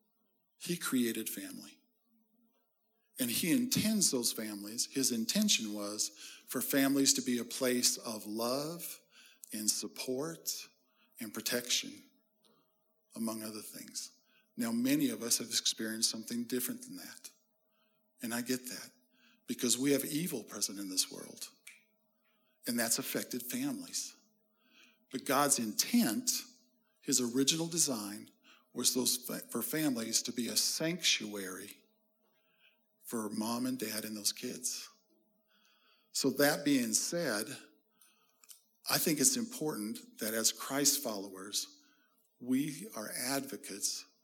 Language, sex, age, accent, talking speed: English, male, 50-69, American, 120 wpm